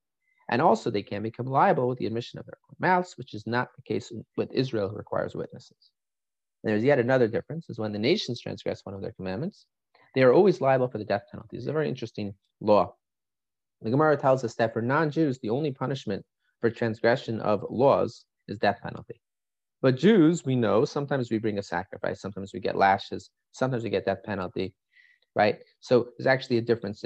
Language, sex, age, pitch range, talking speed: English, male, 30-49, 110-155 Hz, 200 wpm